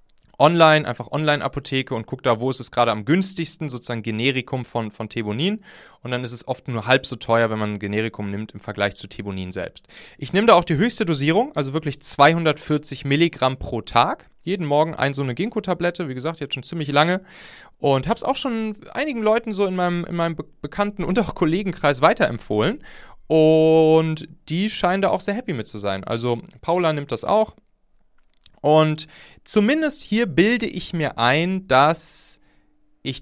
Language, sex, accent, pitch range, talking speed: German, male, German, 125-175 Hz, 185 wpm